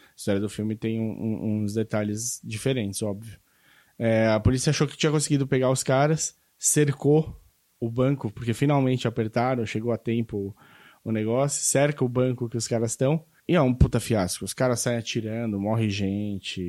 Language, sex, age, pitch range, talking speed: Portuguese, male, 20-39, 110-135 Hz, 175 wpm